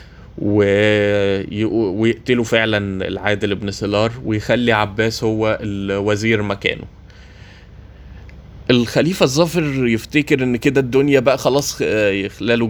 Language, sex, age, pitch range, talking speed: Arabic, male, 20-39, 100-120 Hz, 90 wpm